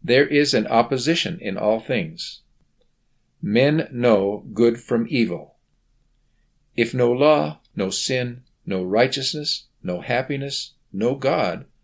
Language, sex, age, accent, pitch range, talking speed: English, male, 50-69, American, 105-145 Hz, 115 wpm